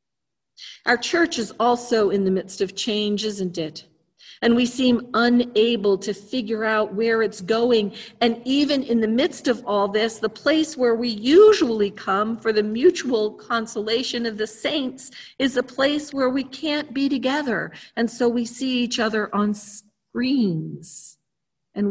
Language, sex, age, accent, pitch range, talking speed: English, female, 50-69, American, 180-230 Hz, 160 wpm